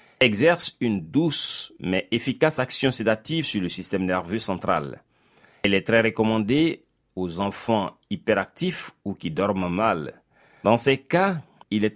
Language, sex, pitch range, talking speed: French, male, 100-140 Hz, 140 wpm